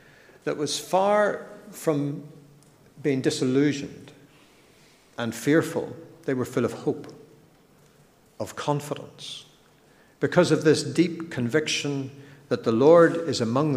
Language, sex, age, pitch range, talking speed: English, male, 60-79, 120-155 Hz, 110 wpm